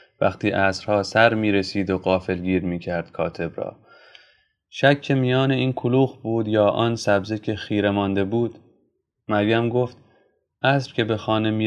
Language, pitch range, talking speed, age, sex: Persian, 95-120 Hz, 165 wpm, 30-49, male